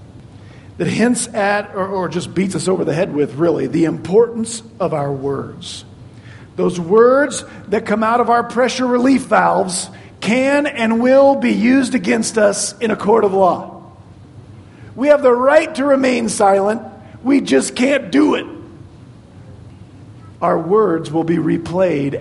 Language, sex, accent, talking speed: English, male, American, 155 wpm